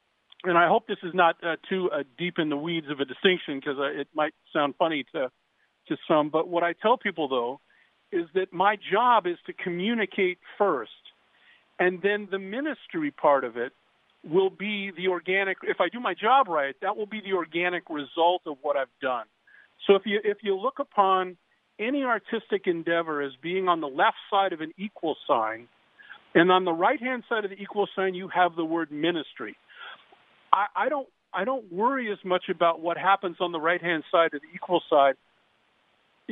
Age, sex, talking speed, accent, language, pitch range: 50-69, male, 195 wpm, American, English, 155-200 Hz